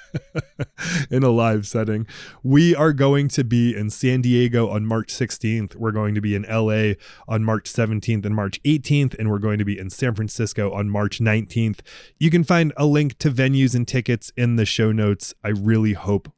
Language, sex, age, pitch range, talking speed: English, male, 20-39, 110-155 Hz, 200 wpm